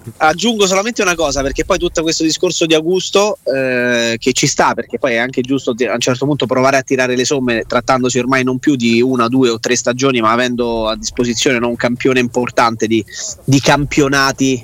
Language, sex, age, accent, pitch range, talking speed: Italian, male, 20-39, native, 125-155 Hz, 200 wpm